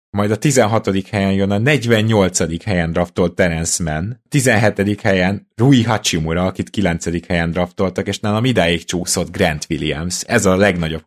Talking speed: 150 wpm